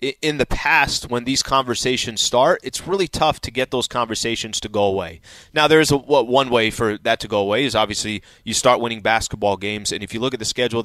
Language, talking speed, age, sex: English, 230 wpm, 30-49, male